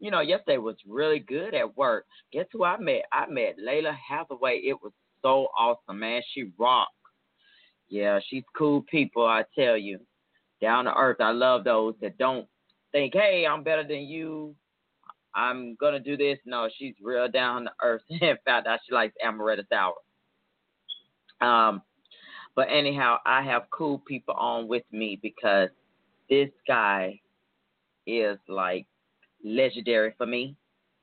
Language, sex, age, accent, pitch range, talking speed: English, male, 30-49, American, 110-140 Hz, 155 wpm